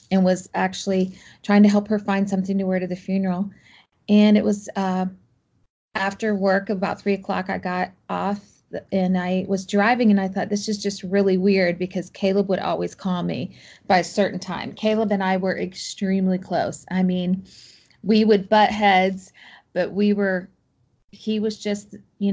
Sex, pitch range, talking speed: female, 185-205 Hz, 180 wpm